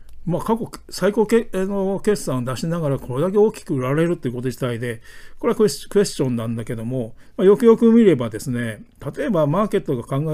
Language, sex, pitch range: Japanese, male, 125-190 Hz